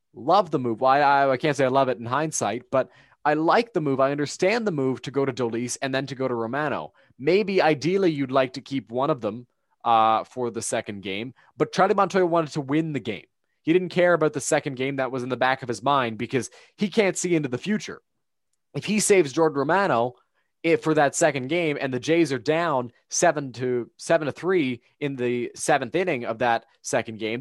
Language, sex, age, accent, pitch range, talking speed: English, male, 30-49, American, 125-165 Hz, 230 wpm